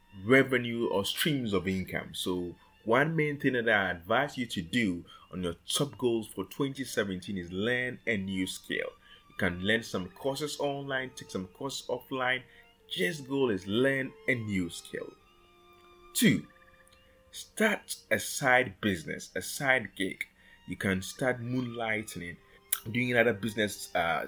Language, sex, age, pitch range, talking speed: English, male, 30-49, 100-140 Hz, 145 wpm